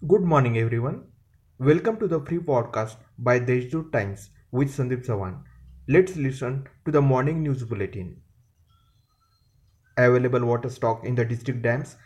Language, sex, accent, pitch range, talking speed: Marathi, male, native, 115-135 Hz, 145 wpm